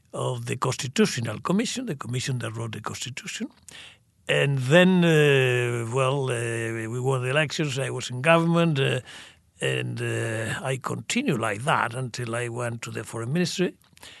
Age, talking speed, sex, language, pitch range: 60-79, 155 wpm, male, English, 115-155 Hz